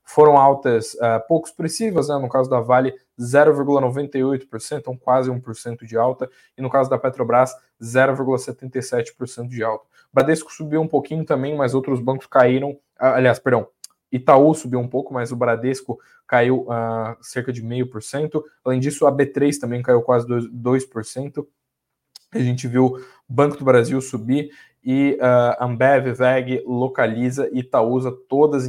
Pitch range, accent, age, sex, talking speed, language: 120-135 Hz, Brazilian, 20-39, male, 155 wpm, Portuguese